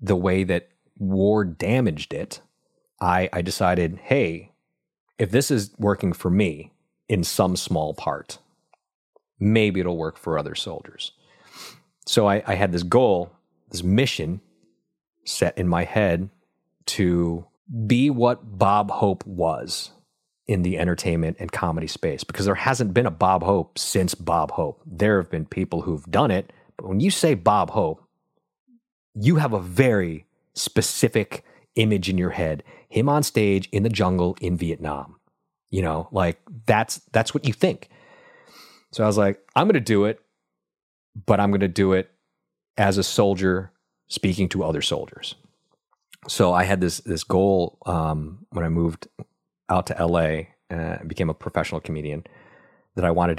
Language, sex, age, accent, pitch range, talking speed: English, male, 30-49, American, 85-105 Hz, 155 wpm